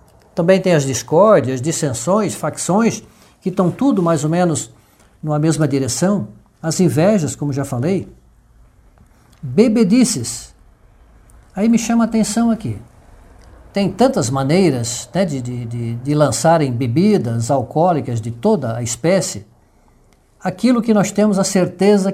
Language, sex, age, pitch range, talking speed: English, male, 60-79, 140-195 Hz, 125 wpm